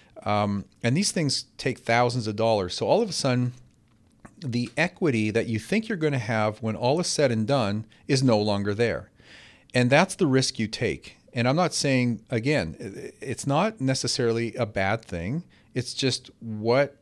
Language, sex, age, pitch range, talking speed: English, male, 40-59, 105-130 Hz, 185 wpm